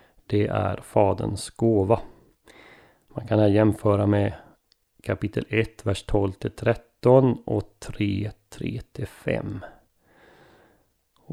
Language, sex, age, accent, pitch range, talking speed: Swedish, male, 30-49, native, 100-115 Hz, 90 wpm